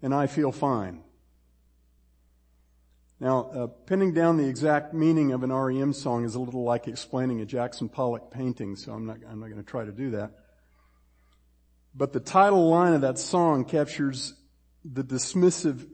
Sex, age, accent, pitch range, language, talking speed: male, 50-69, American, 105-160 Hz, English, 165 wpm